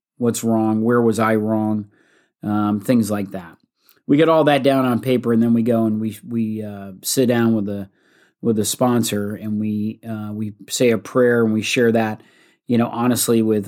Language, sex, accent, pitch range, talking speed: English, male, American, 105-120 Hz, 205 wpm